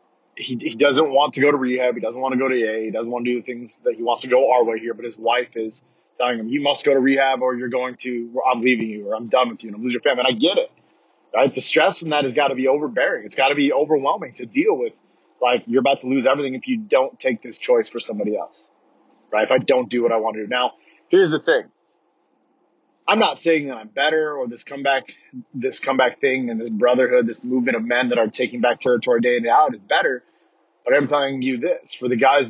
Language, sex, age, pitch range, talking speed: English, male, 20-39, 120-155 Hz, 275 wpm